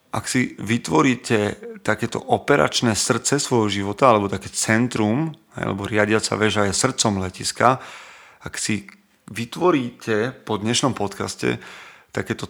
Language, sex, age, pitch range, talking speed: Slovak, male, 30-49, 105-120 Hz, 115 wpm